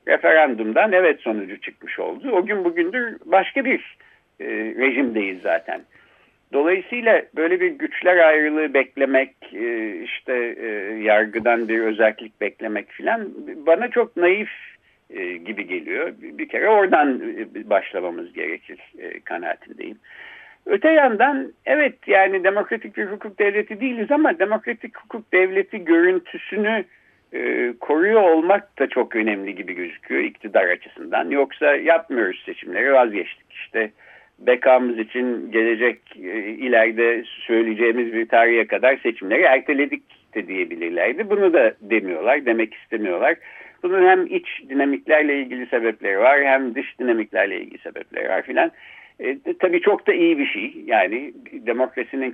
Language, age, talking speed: Turkish, 60-79, 125 wpm